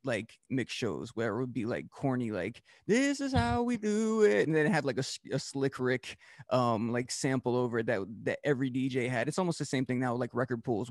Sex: male